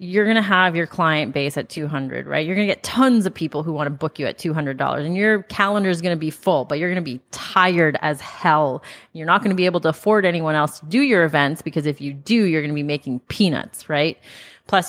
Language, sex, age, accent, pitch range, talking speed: English, female, 30-49, American, 145-190 Hz, 265 wpm